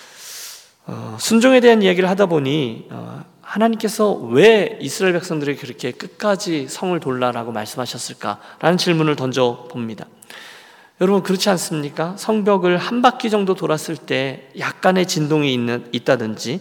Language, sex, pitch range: Korean, male, 140-200 Hz